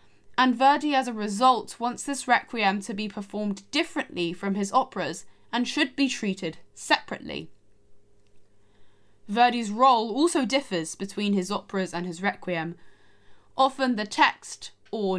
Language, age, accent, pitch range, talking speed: English, 10-29, British, 190-255 Hz, 135 wpm